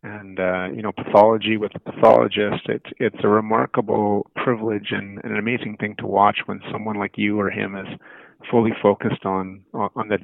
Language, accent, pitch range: English, American, 100-110 Hz